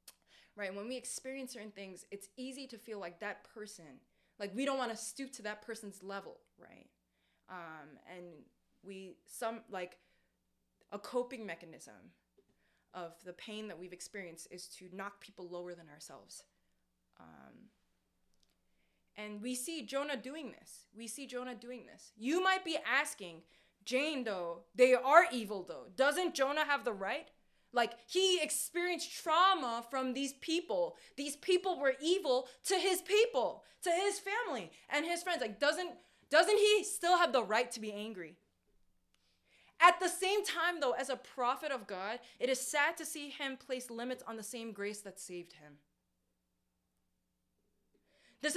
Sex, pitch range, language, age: female, 200-315 Hz, English, 20-39